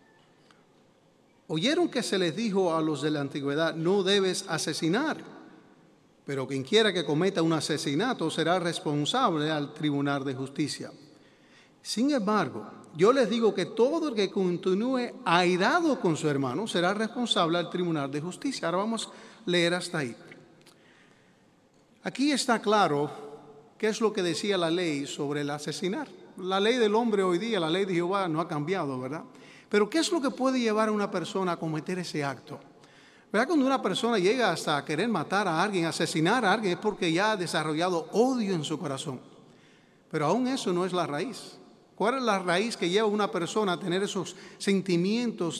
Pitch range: 155-215 Hz